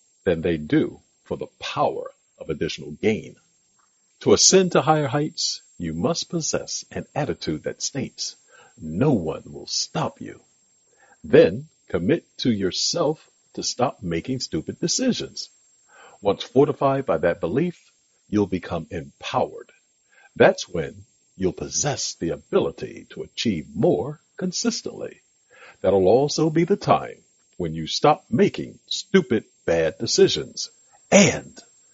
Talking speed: 125 wpm